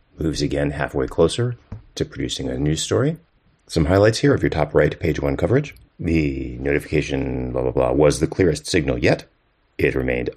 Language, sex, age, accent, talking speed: English, male, 30-49, American, 180 wpm